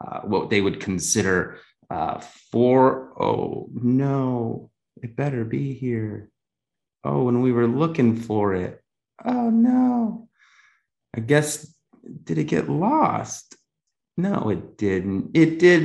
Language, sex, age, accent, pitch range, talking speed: English, male, 30-49, American, 105-130 Hz, 125 wpm